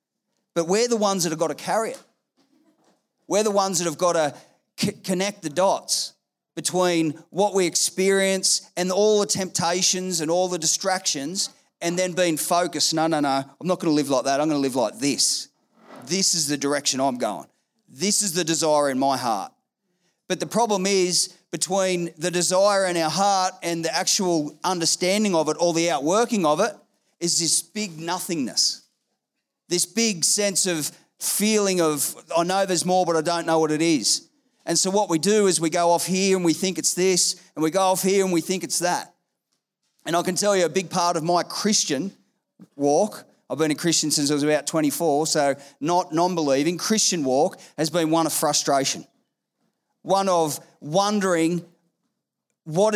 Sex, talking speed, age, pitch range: male, 190 wpm, 30-49, 160-195 Hz